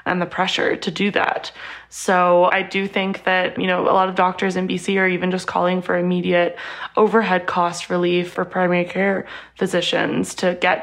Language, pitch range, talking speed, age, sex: English, 180-230 Hz, 190 wpm, 20-39, female